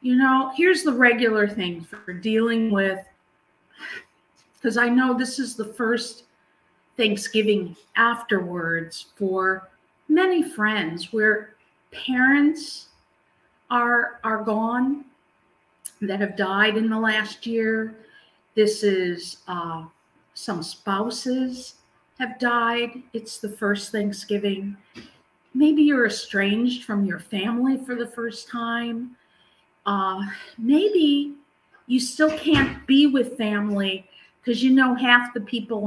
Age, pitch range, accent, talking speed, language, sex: 50-69, 200-260 Hz, American, 115 wpm, English, female